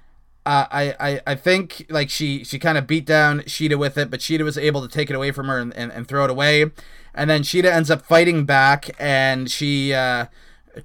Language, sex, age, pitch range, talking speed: English, male, 30-49, 130-155 Hz, 225 wpm